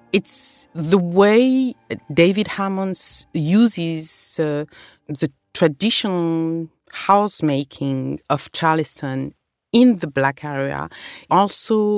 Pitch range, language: 140-185 Hz, English